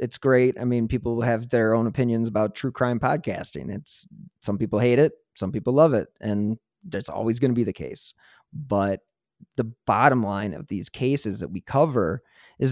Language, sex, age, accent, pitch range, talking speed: English, male, 30-49, American, 115-140 Hz, 195 wpm